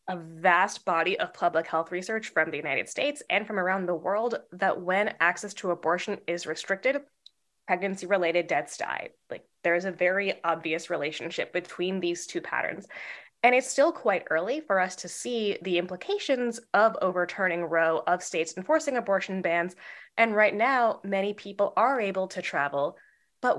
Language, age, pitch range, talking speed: English, 20-39, 180-225 Hz, 170 wpm